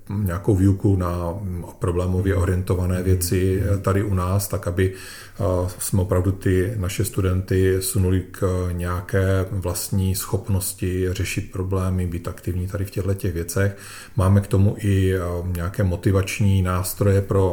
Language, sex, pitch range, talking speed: Czech, male, 90-100 Hz, 125 wpm